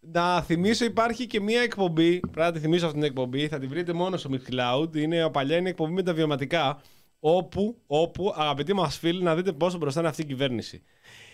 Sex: male